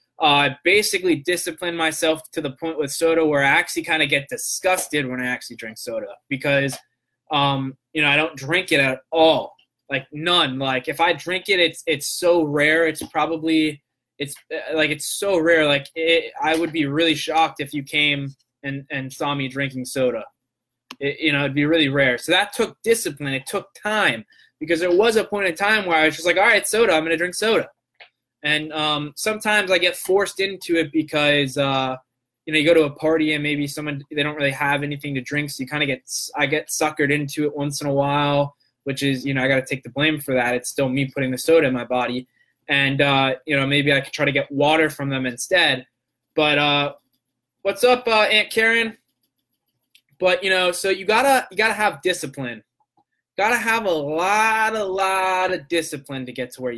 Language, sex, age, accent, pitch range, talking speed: English, male, 20-39, American, 140-175 Hz, 215 wpm